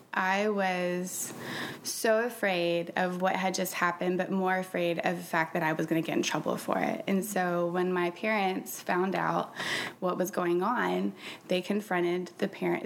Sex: female